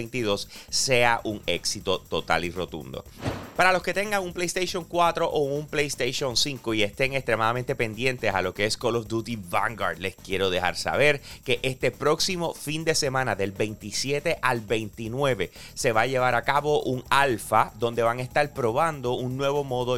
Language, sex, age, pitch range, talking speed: Spanish, male, 30-49, 110-135 Hz, 175 wpm